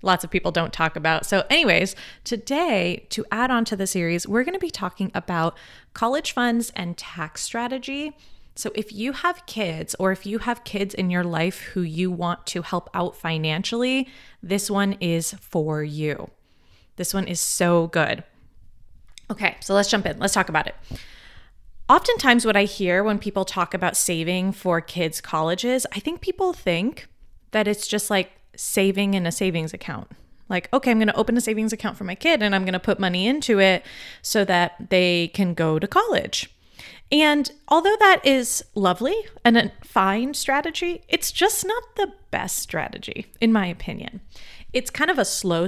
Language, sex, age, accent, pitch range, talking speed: English, female, 20-39, American, 175-235 Hz, 185 wpm